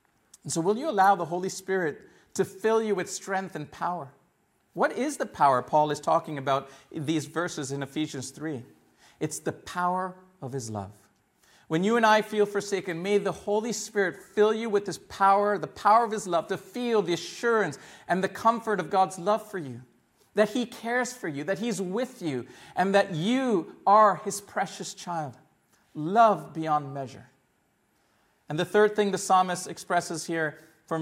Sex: male